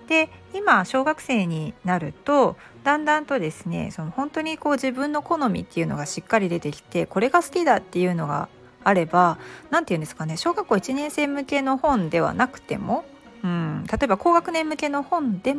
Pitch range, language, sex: 180-295 Hz, Japanese, female